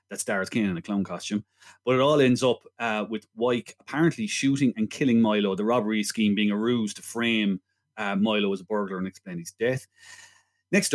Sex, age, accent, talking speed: male, 30-49, Irish, 210 wpm